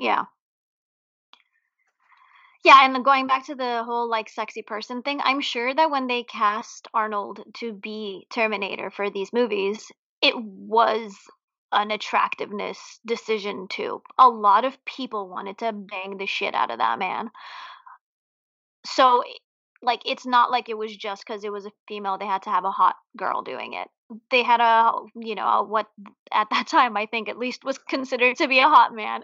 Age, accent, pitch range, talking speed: 20-39, American, 215-280 Hz, 180 wpm